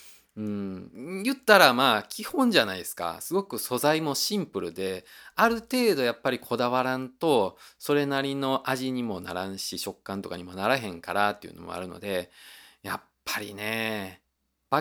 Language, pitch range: Japanese, 100-160 Hz